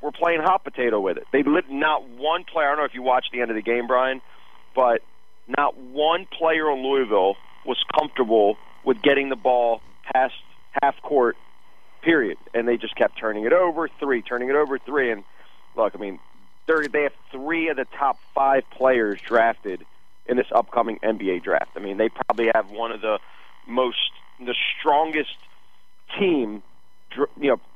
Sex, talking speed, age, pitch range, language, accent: male, 175 wpm, 40-59, 115-155 Hz, English, American